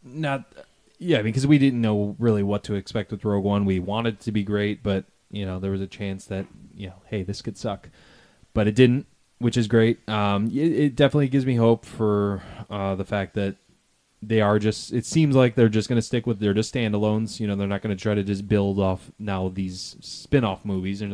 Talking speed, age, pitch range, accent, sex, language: 235 wpm, 20-39, 100-115 Hz, American, male, English